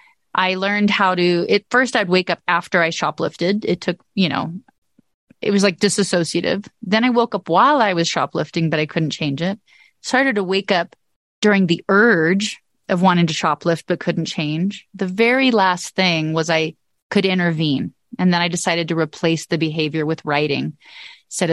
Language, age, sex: English, 30-49, female